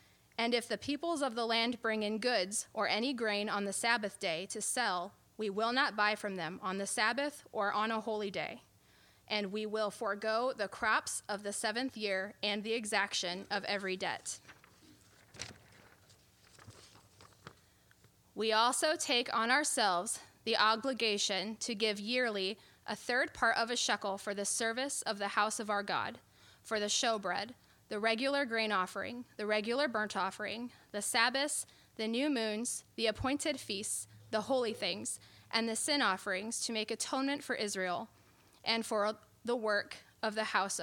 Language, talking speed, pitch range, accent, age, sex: English, 165 wpm, 200-240 Hz, American, 20-39, female